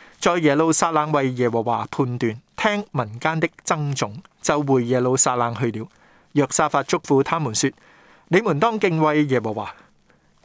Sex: male